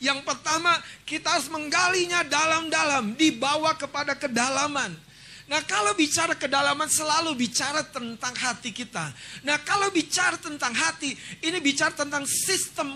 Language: Indonesian